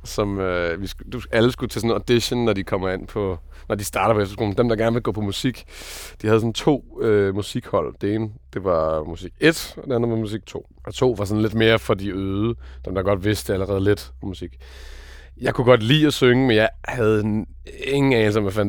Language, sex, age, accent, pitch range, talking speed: Danish, male, 30-49, native, 85-115 Hz, 235 wpm